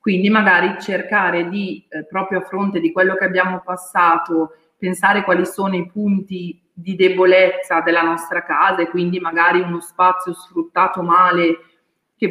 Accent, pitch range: native, 170-190 Hz